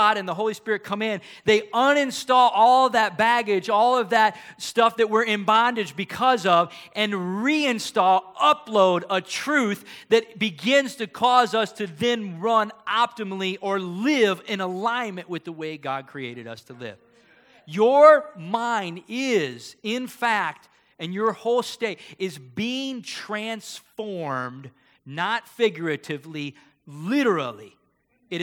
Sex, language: male, English